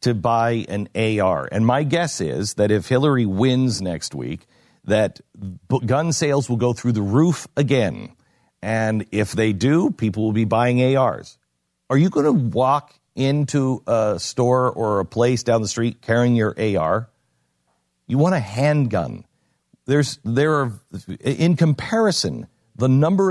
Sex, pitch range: male, 100-130 Hz